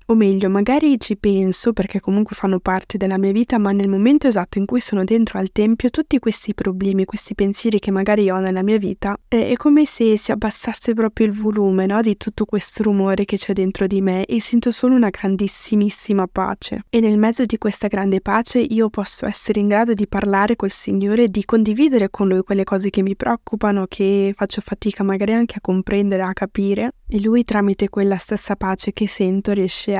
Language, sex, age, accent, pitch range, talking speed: Italian, female, 10-29, native, 195-215 Hz, 200 wpm